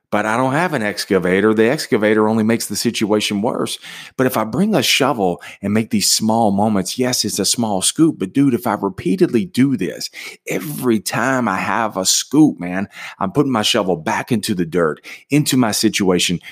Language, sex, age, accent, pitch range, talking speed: English, male, 40-59, American, 90-120 Hz, 195 wpm